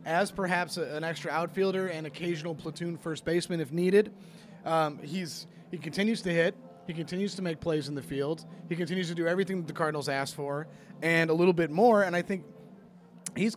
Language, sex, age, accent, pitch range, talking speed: English, male, 30-49, American, 155-195 Hz, 200 wpm